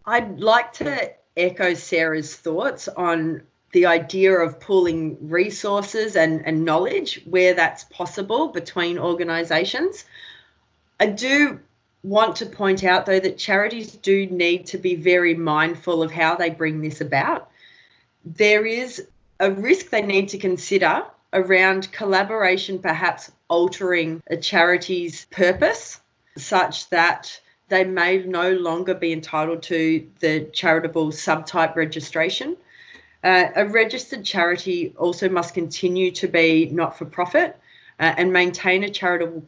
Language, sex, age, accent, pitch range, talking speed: English, female, 30-49, Australian, 165-195 Hz, 125 wpm